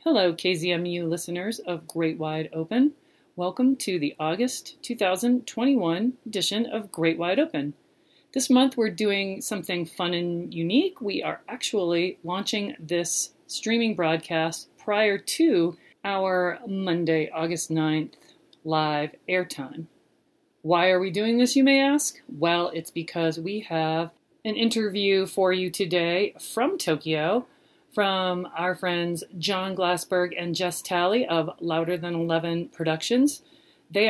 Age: 40-59